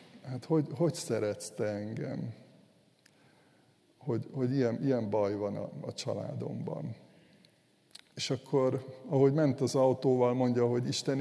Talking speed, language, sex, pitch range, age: 130 wpm, Hungarian, male, 115-145 Hz, 60-79